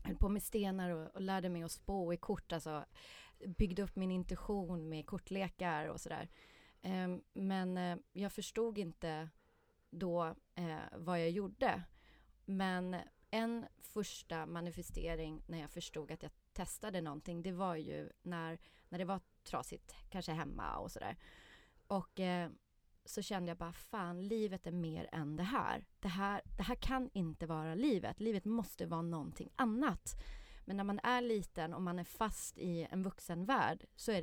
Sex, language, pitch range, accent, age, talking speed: female, English, 165-200 Hz, Swedish, 30-49, 160 wpm